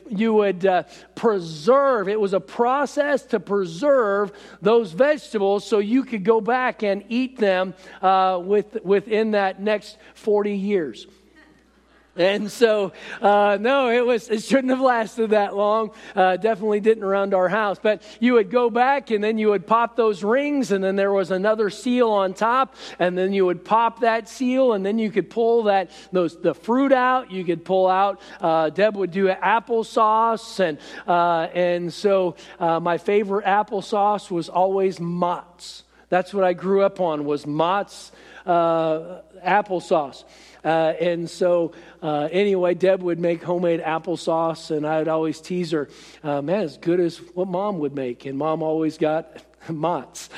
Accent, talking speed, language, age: American, 170 wpm, English, 50-69